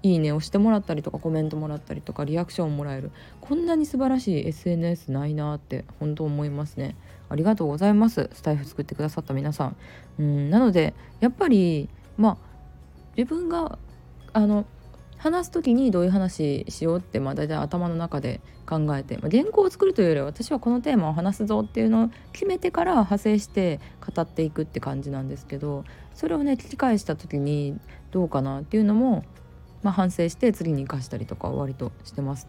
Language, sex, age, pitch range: Japanese, female, 20-39, 135-205 Hz